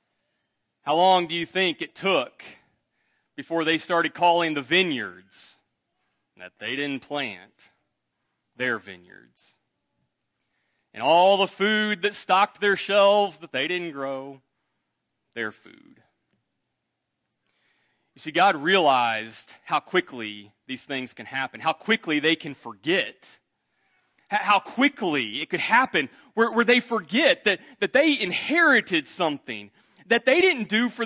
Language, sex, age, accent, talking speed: English, male, 30-49, American, 130 wpm